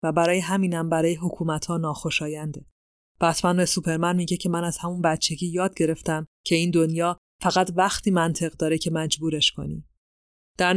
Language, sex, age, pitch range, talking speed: Persian, female, 20-39, 160-185 Hz, 155 wpm